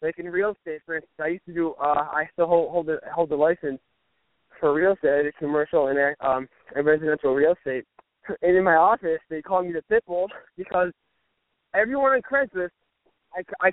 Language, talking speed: English, 195 wpm